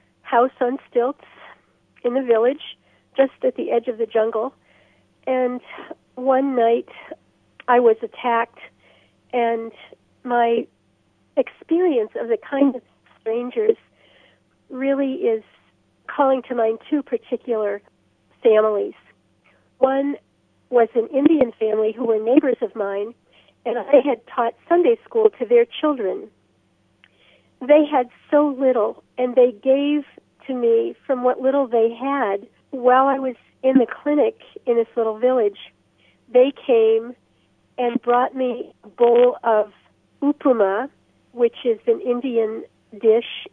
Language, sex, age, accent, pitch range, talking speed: English, female, 50-69, American, 235-290 Hz, 125 wpm